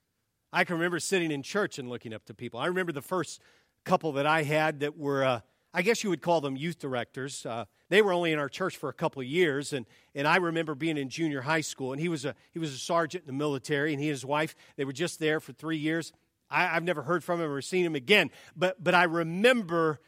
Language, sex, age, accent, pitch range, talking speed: English, male, 50-69, American, 155-245 Hz, 265 wpm